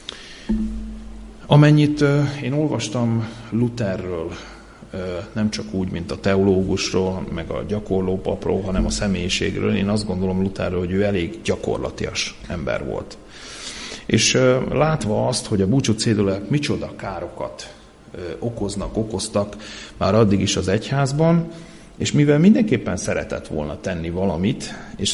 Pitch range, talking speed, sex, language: 95-115 Hz, 120 wpm, male, Hungarian